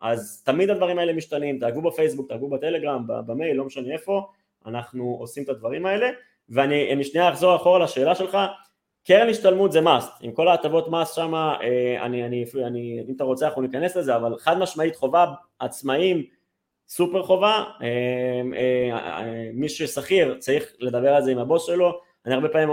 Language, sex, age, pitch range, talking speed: Hebrew, male, 20-39, 125-165 Hz, 155 wpm